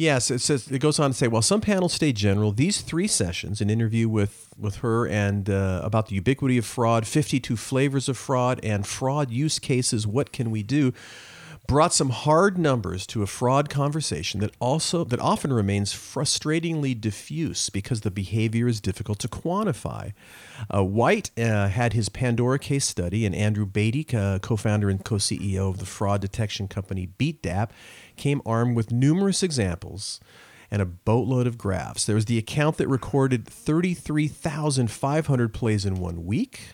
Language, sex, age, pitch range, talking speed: English, male, 40-59, 105-145 Hz, 170 wpm